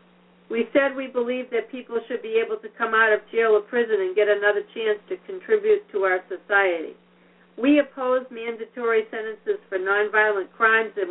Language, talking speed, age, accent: English, 180 wpm, 60-79, American